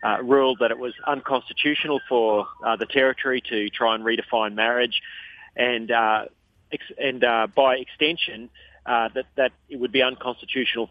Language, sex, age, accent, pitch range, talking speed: English, male, 30-49, Australian, 115-130 Hz, 160 wpm